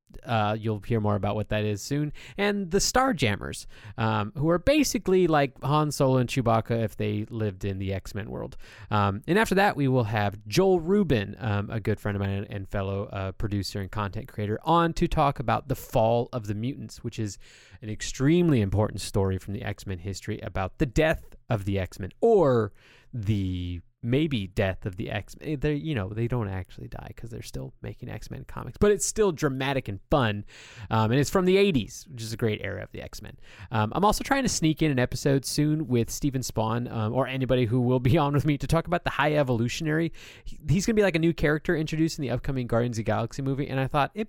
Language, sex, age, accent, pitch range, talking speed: English, male, 30-49, American, 105-150 Hz, 220 wpm